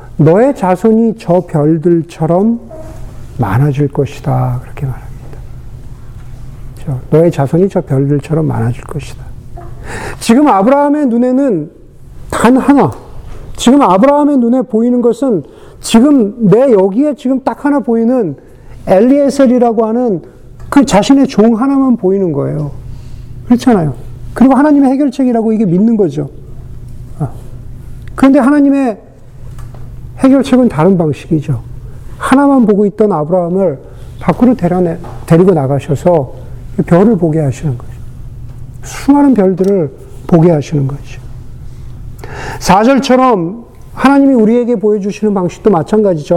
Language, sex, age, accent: Korean, male, 40-59, native